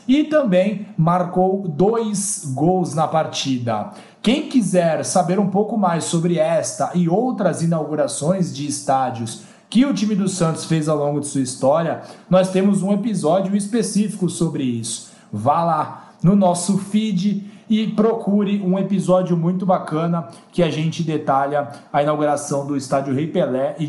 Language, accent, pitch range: Portuguese, Brazilian, 150-205 Hz